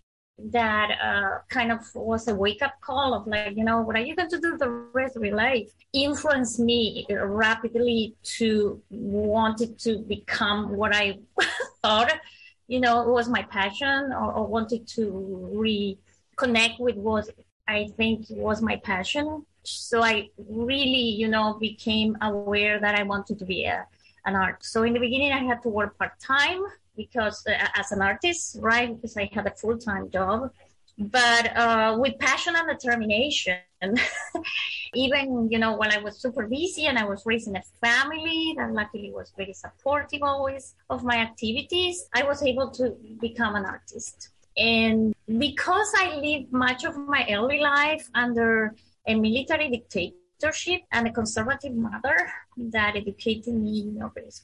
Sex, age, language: female, 20-39, English